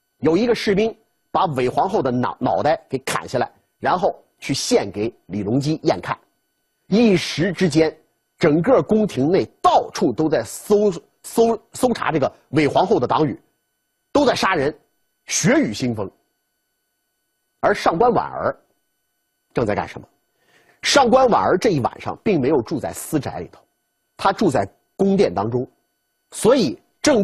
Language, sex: Chinese, male